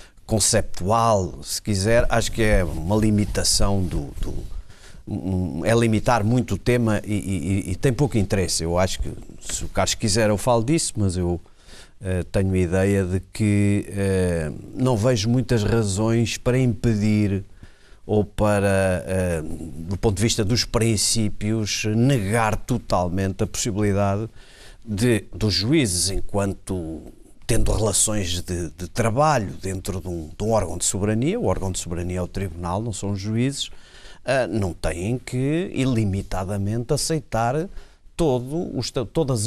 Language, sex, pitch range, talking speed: Portuguese, male, 95-120 Hz, 140 wpm